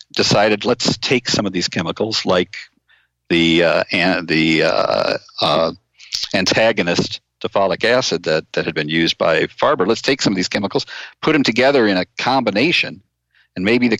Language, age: English, 50-69